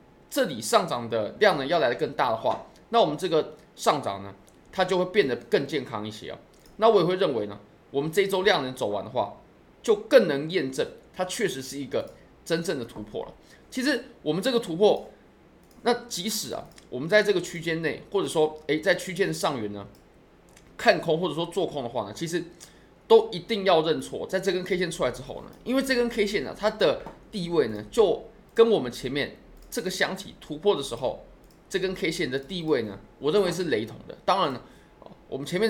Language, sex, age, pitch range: Chinese, male, 20-39, 150-215 Hz